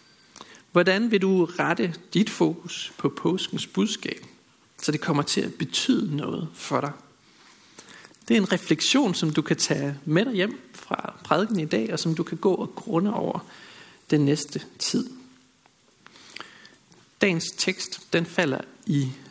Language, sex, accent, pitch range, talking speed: Danish, male, native, 150-200 Hz, 150 wpm